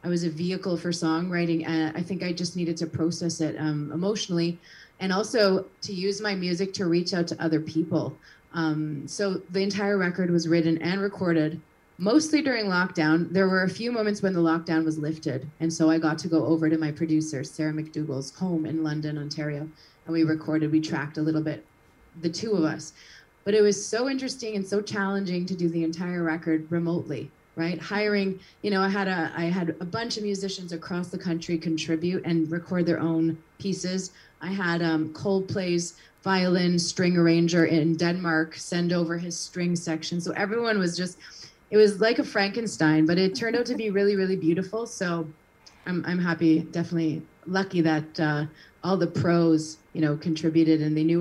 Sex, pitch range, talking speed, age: female, 160-190 Hz, 190 wpm, 30-49